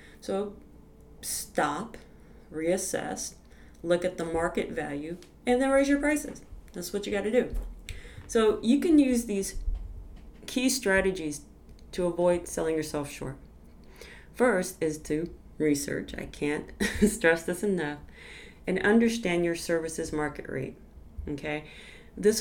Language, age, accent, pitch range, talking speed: English, 40-59, American, 145-205 Hz, 130 wpm